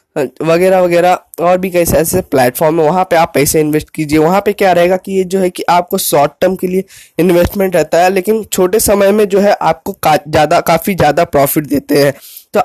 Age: 20-39